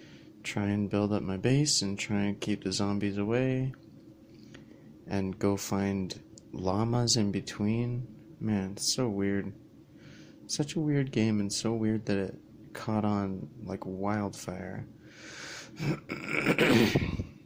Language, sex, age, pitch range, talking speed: English, male, 30-49, 100-115 Hz, 120 wpm